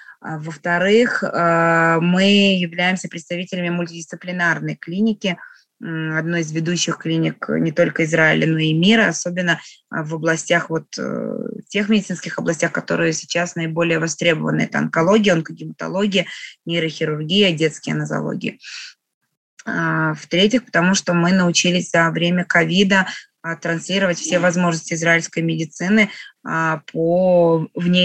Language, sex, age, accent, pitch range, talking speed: Russian, female, 20-39, native, 165-185 Hz, 105 wpm